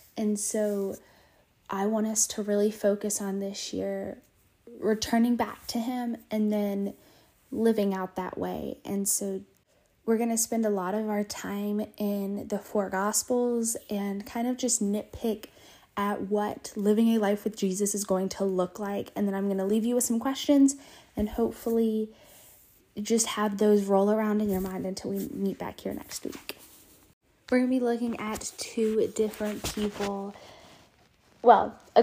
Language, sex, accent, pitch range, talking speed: English, female, American, 200-230 Hz, 170 wpm